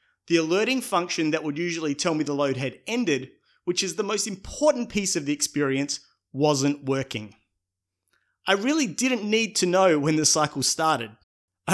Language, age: English, 30-49